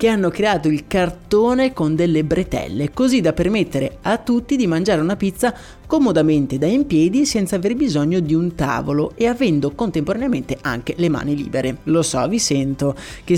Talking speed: 175 wpm